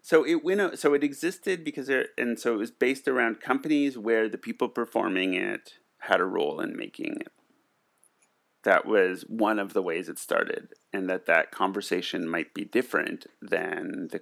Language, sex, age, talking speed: English, male, 30-49, 180 wpm